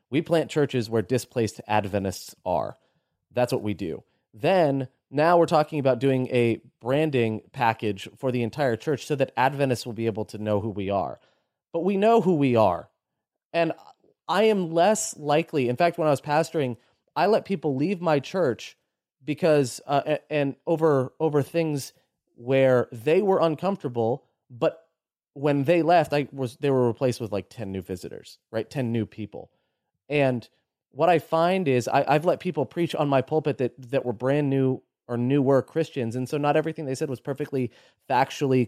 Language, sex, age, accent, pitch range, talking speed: English, male, 30-49, American, 125-165 Hz, 180 wpm